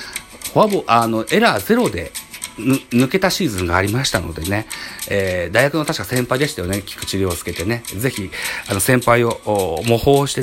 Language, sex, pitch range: Japanese, male, 100-145 Hz